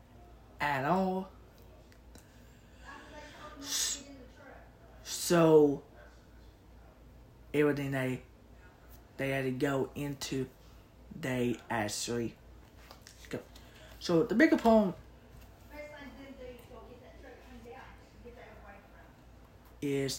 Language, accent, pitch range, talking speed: English, American, 120-150 Hz, 55 wpm